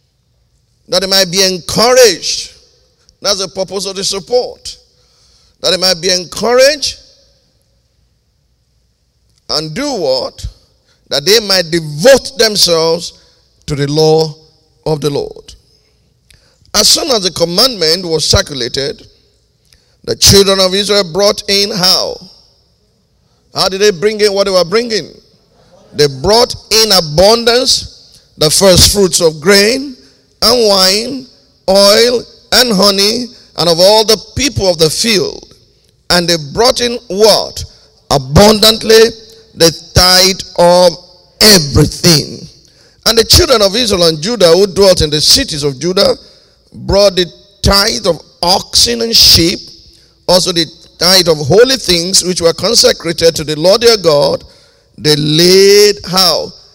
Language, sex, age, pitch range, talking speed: English, male, 50-69, 170-225 Hz, 130 wpm